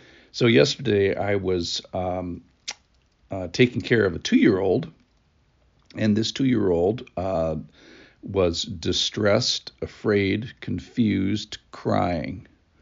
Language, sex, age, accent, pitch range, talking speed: English, male, 50-69, American, 85-115 Hz, 90 wpm